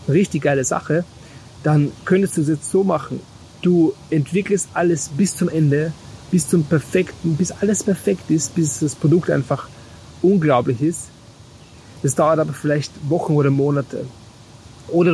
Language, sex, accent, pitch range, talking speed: German, male, German, 135-170 Hz, 145 wpm